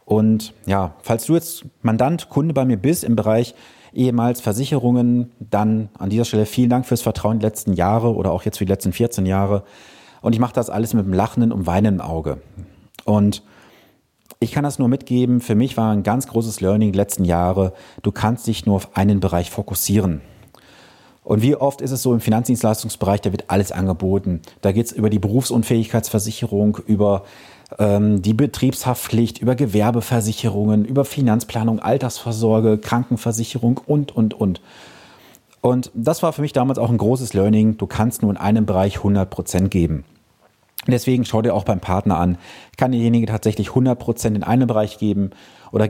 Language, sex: German, male